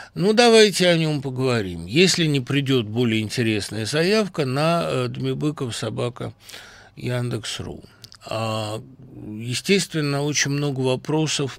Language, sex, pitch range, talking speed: Russian, male, 125-170 Hz, 100 wpm